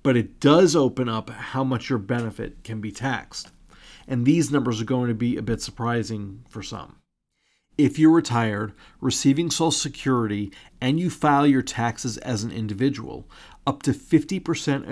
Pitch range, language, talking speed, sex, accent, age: 110-140 Hz, English, 165 wpm, male, American, 40-59